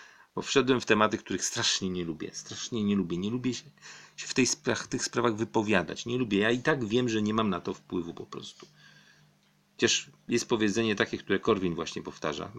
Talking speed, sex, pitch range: 205 wpm, male, 95-120 Hz